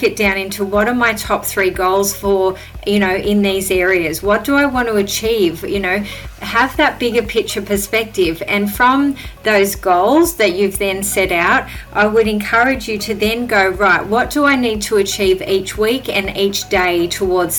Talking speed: 195 wpm